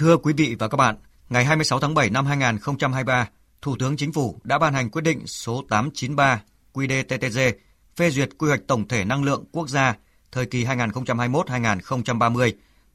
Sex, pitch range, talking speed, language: male, 115-140 Hz, 180 wpm, Vietnamese